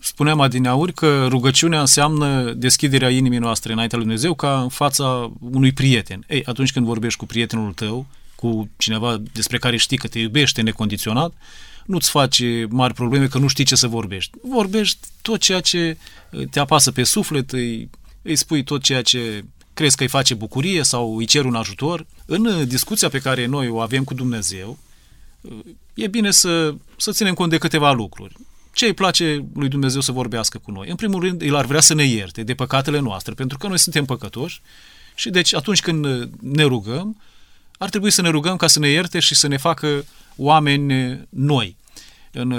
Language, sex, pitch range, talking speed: Romanian, male, 120-160 Hz, 185 wpm